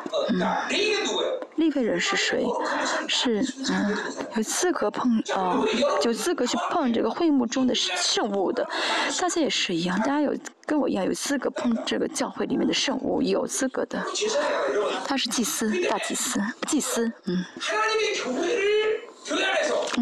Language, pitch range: Chinese, 240-325 Hz